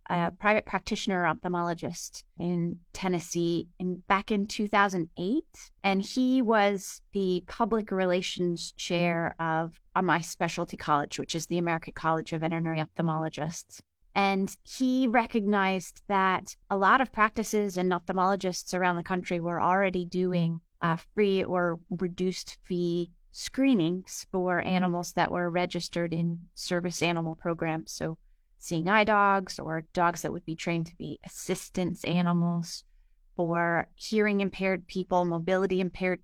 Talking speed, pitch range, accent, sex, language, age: 135 wpm, 170-195 Hz, American, female, English, 30-49